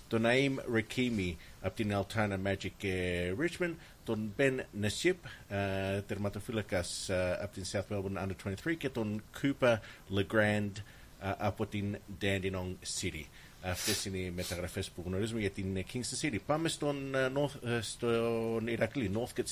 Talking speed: 115 wpm